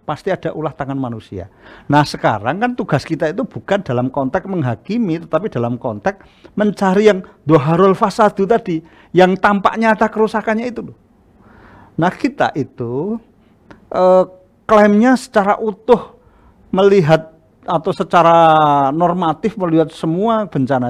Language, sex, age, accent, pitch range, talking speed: Indonesian, male, 50-69, native, 135-205 Hz, 120 wpm